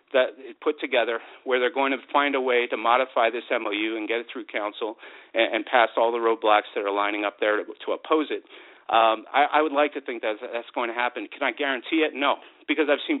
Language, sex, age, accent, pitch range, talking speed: English, male, 40-59, American, 120-155 Hz, 235 wpm